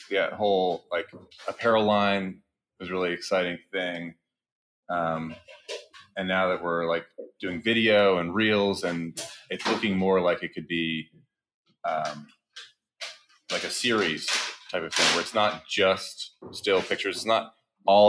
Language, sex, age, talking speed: English, male, 30-49, 145 wpm